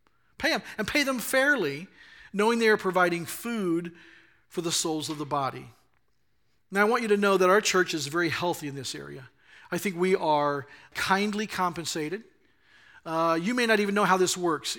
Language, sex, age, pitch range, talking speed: English, male, 40-59, 165-200 Hz, 190 wpm